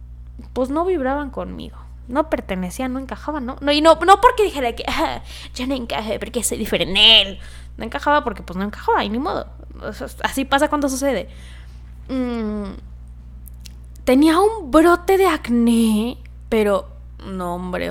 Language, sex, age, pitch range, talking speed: Spanish, female, 10-29, 175-280 Hz, 165 wpm